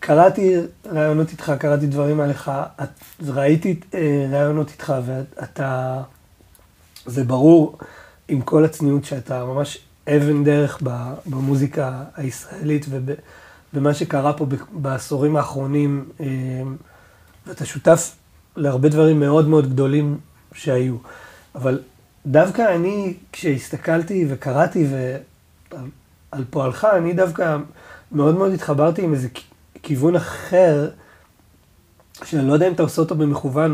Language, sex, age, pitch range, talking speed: Hebrew, male, 30-49, 135-165 Hz, 105 wpm